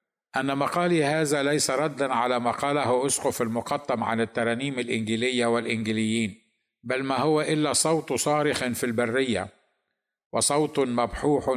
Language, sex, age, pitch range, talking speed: Arabic, male, 50-69, 120-145 Hz, 120 wpm